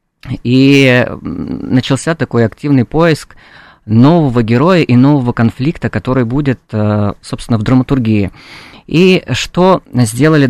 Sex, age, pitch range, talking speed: female, 20-39, 115-145 Hz, 105 wpm